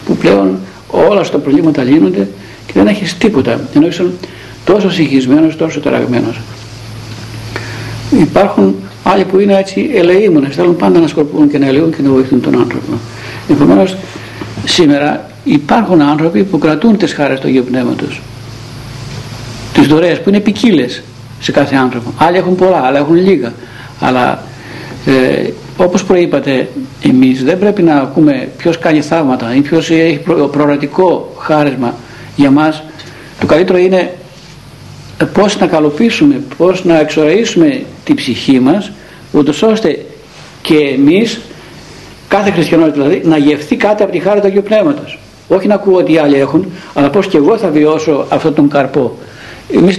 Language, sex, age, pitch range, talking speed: Greek, male, 60-79, 130-180 Hz, 150 wpm